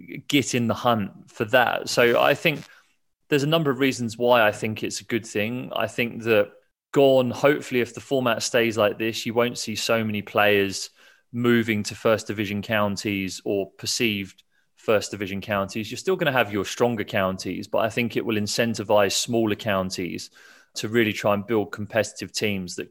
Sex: male